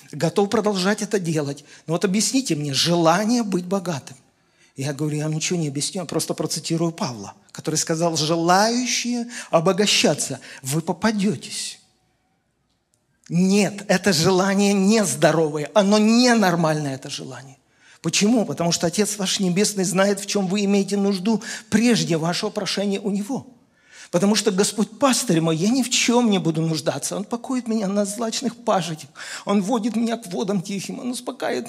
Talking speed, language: 150 wpm, Russian